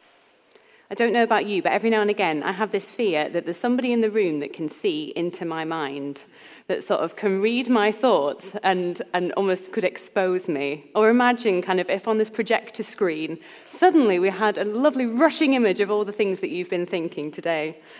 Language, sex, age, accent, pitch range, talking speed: English, female, 30-49, British, 185-245 Hz, 215 wpm